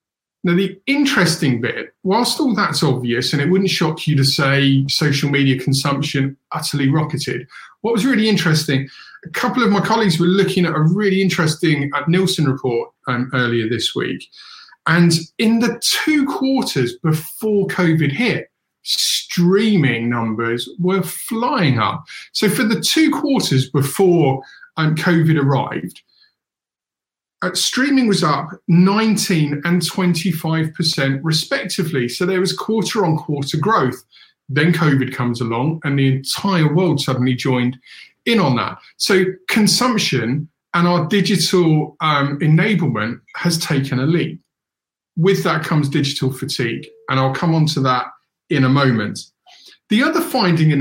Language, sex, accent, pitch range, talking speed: English, male, British, 135-190 Hz, 140 wpm